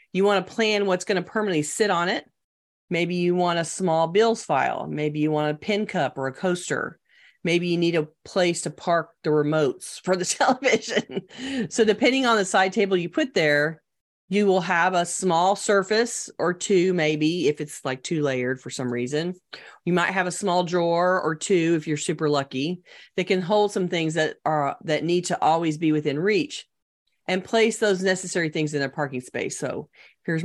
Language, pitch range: English, 145-185 Hz